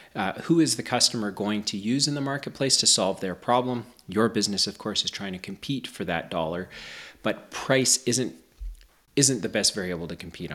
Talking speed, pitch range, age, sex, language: 200 wpm, 95-125 Hz, 30-49, male, English